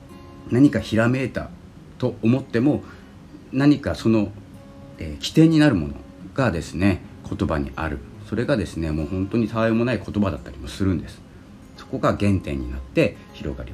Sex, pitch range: male, 80-110 Hz